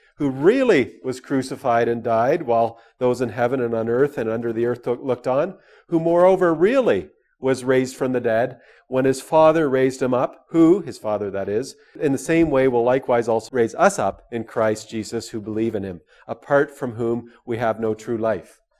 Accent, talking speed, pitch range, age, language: American, 200 wpm, 120-175 Hz, 40-59, English